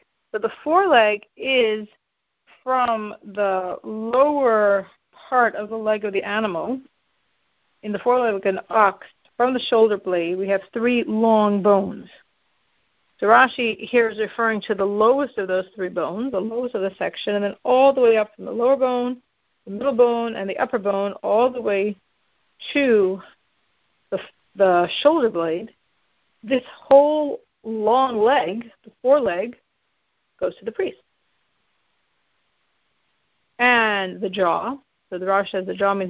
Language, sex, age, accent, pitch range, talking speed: English, female, 40-59, American, 200-250 Hz, 150 wpm